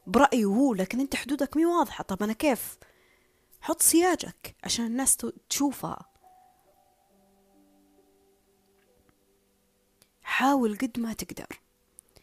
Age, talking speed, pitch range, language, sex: 20-39, 95 wpm, 185-255 Hz, Arabic, female